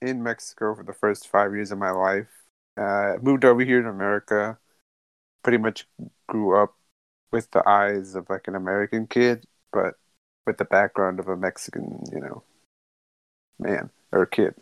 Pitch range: 95-115 Hz